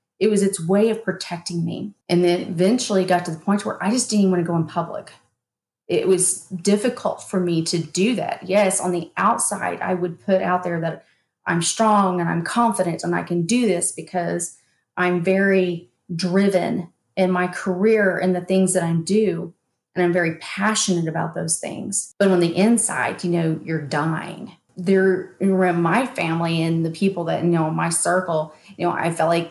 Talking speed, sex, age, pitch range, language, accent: 195 wpm, female, 30-49, 170-200 Hz, English, American